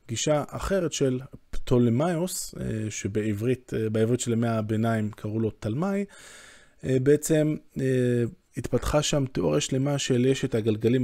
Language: Hebrew